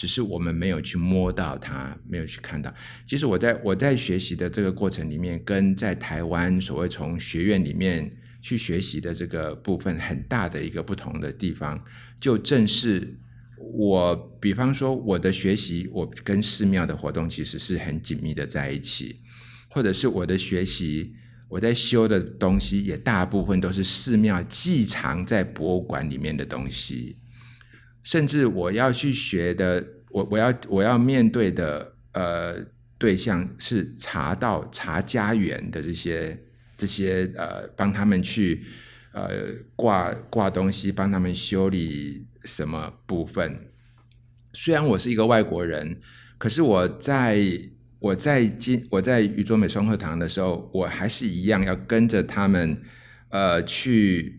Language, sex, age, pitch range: Chinese, male, 50-69, 85-115 Hz